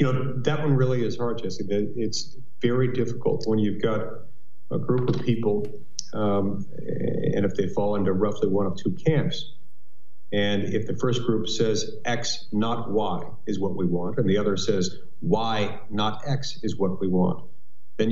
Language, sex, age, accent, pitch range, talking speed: English, male, 50-69, American, 100-130 Hz, 180 wpm